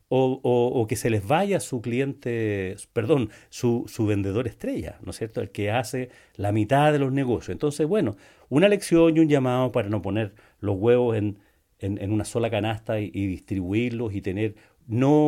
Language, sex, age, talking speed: Spanish, male, 40-59, 190 wpm